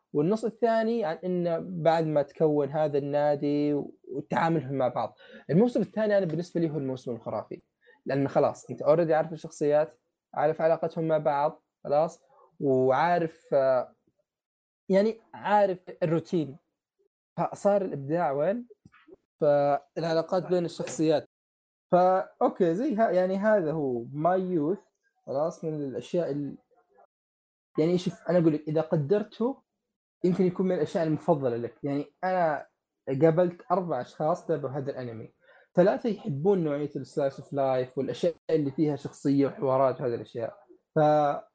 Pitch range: 140-180 Hz